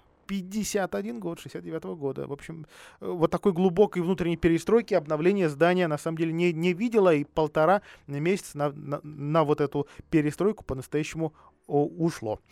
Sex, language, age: male, Russian, 20-39